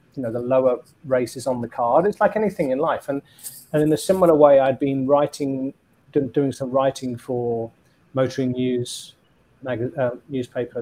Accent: British